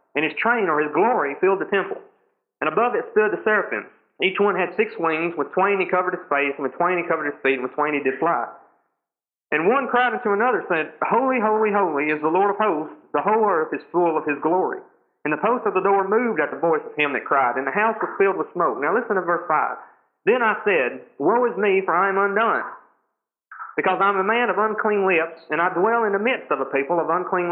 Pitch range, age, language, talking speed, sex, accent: 165-245 Hz, 40-59, English, 255 wpm, male, American